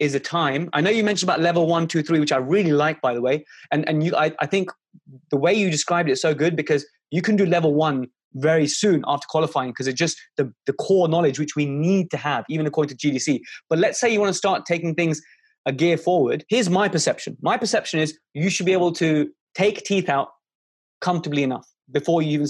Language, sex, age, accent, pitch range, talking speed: English, male, 20-39, British, 150-180 Hz, 240 wpm